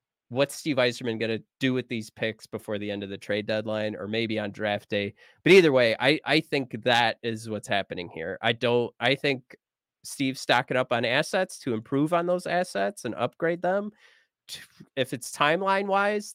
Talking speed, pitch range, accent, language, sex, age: 195 wpm, 120-170 Hz, American, English, male, 30-49